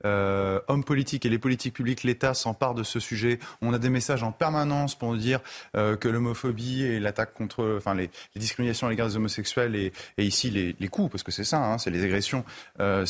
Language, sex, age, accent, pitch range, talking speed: French, male, 30-49, French, 110-155 Hz, 230 wpm